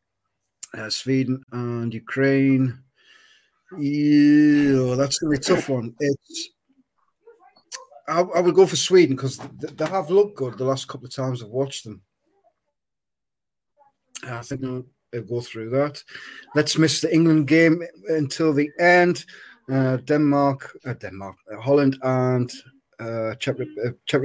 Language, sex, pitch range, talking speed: English, male, 125-160 Hz, 130 wpm